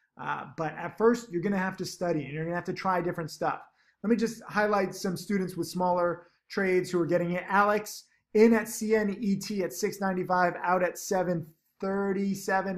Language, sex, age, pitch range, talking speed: English, male, 20-39, 160-195 Hz, 185 wpm